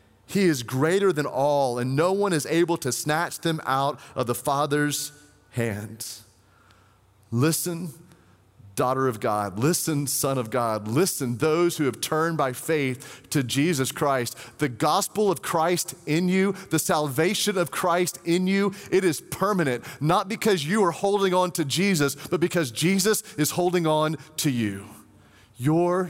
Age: 30-49